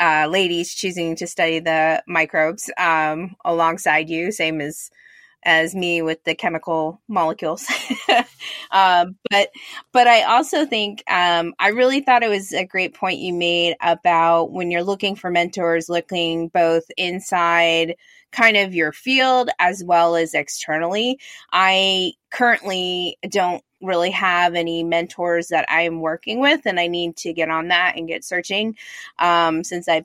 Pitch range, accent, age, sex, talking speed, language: 170-200 Hz, American, 20-39, female, 150 wpm, English